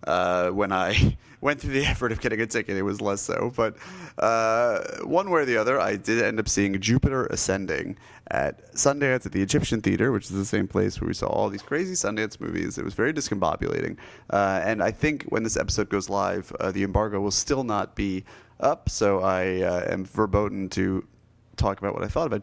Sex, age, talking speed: male, 30-49, 215 wpm